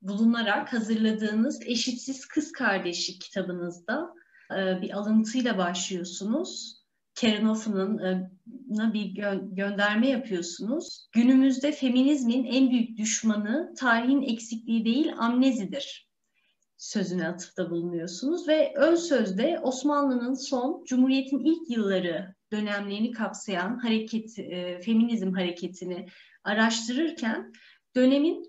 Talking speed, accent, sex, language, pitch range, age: 90 wpm, native, female, Turkish, 200-260 Hz, 30-49